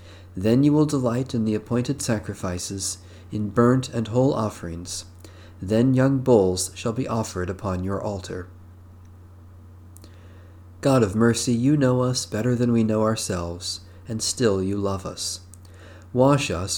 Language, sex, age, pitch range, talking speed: English, male, 40-59, 90-120 Hz, 145 wpm